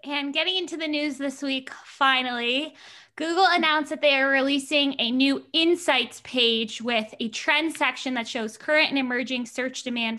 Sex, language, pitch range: female, English, 230-280 Hz